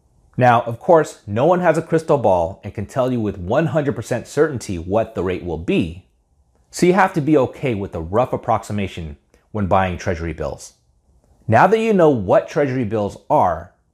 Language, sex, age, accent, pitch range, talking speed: English, male, 30-49, American, 90-145 Hz, 185 wpm